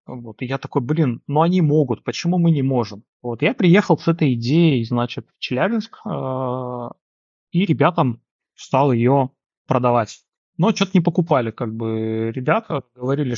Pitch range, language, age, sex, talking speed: 120-160 Hz, Russian, 20-39, male, 150 wpm